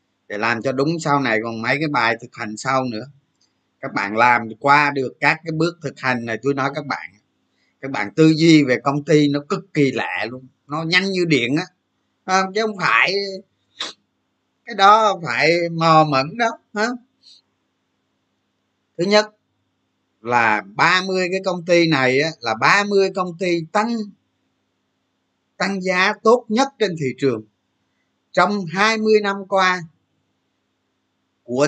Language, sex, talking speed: Vietnamese, male, 155 wpm